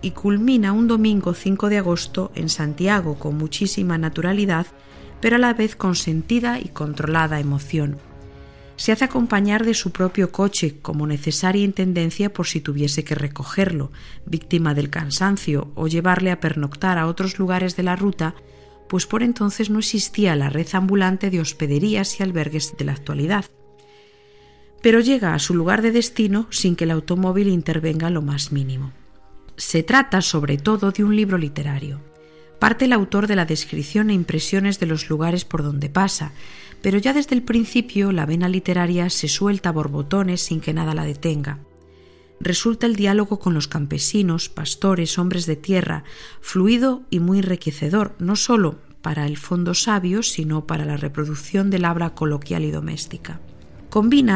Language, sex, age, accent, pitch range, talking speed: Spanish, female, 50-69, Spanish, 155-200 Hz, 165 wpm